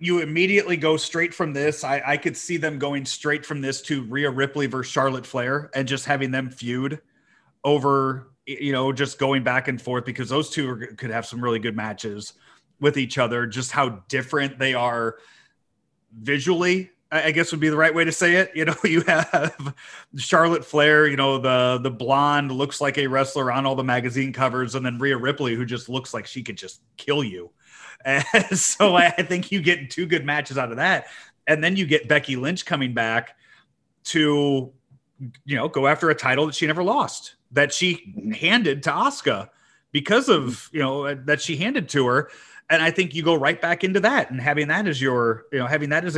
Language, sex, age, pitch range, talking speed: English, male, 30-49, 130-155 Hz, 205 wpm